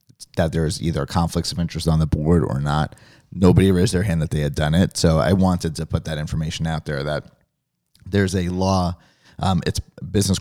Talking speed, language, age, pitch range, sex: 210 wpm, English, 30-49, 85-95 Hz, male